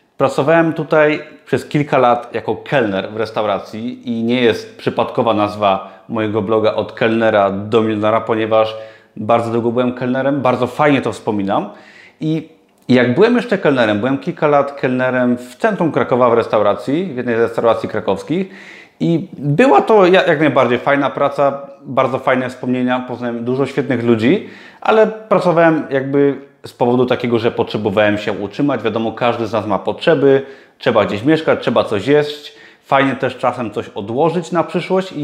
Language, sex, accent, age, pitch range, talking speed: Polish, male, native, 30-49, 115-150 Hz, 155 wpm